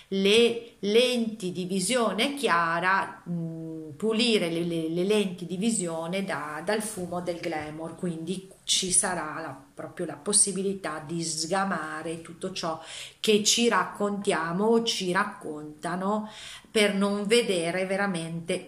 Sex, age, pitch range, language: female, 40-59, 160-205 Hz, Italian